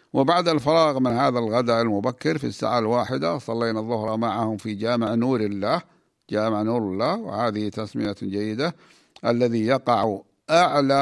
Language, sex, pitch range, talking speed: Arabic, male, 110-130 Hz, 135 wpm